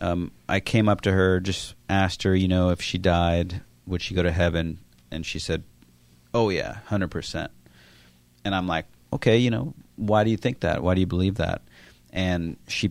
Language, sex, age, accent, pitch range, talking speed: English, male, 40-59, American, 80-100 Hz, 200 wpm